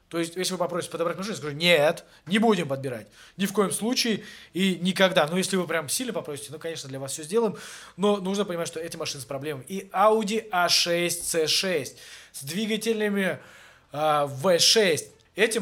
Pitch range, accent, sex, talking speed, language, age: 155-205 Hz, native, male, 185 wpm, Russian, 20-39